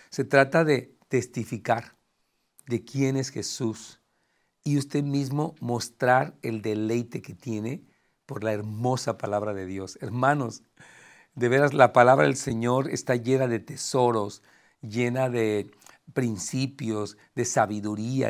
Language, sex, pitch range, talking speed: Spanish, male, 115-145 Hz, 125 wpm